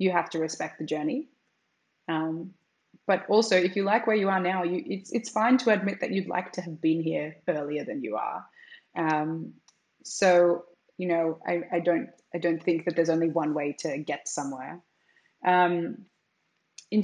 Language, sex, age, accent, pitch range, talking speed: English, female, 20-39, Australian, 165-210 Hz, 185 wpm